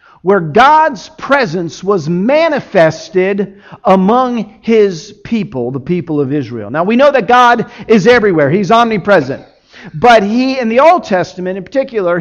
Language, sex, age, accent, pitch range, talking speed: English, male, 50-69, American, 155-230 Hz, 145 wpm